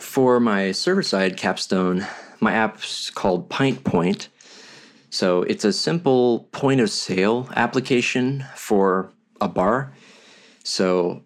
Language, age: English, 20-39